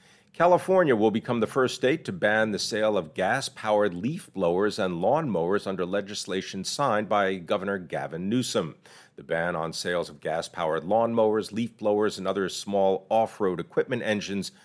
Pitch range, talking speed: 95-125 Hz, 155 wpm